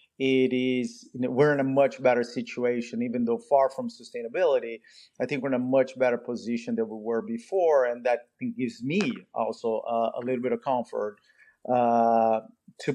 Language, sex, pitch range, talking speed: English, male, 115-135 Hz, 175 wpm